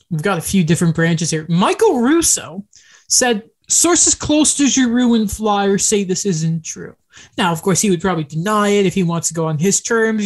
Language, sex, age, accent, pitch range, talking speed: English, male, 20-39, American, 175-225 Hz, 210 wpm